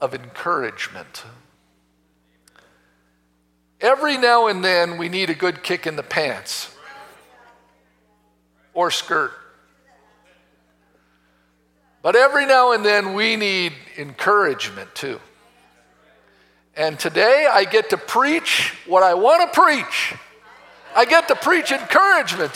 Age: 50-69